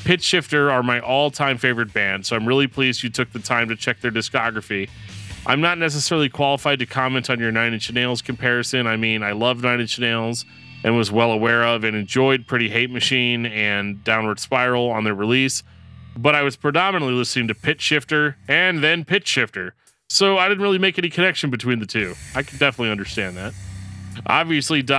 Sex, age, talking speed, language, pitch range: male, 30-49, 195 wpm, English, 115-135 Hz